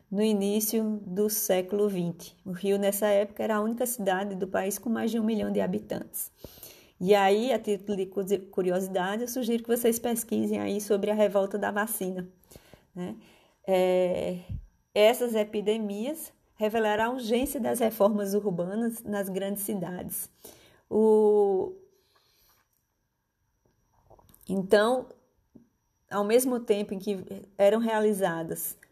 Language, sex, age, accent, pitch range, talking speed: Portuguese, female, 20-39, Brazilian, 195-220 Hz, 125 wpm